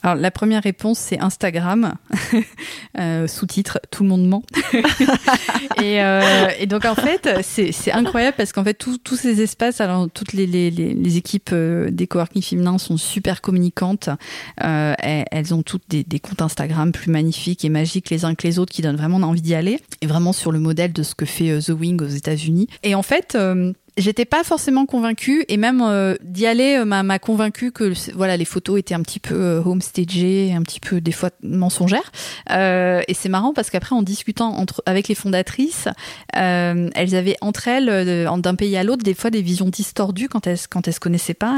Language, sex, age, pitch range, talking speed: French, female, 30-49, 170-215 Hz, 205 wpm